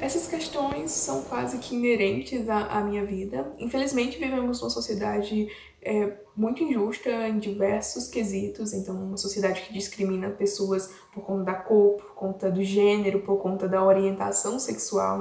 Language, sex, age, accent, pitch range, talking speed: Portuguese, female, 10-29, Brazilian, 205-245 Hz, 155 wpm